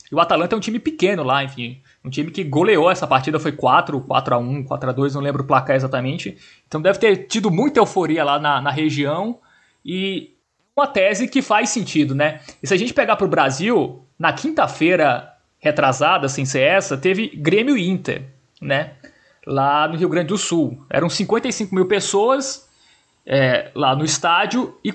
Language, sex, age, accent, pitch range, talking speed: Portuguese, male, 20-39, Brazilian, 145-205 Hz, 175 wpm